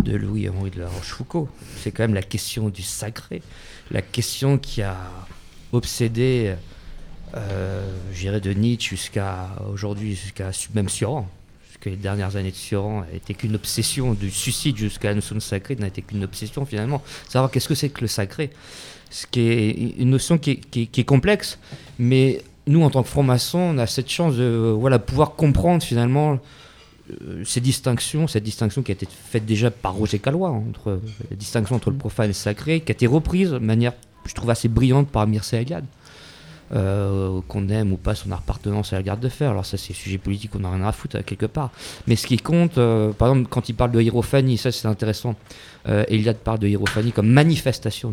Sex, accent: male, French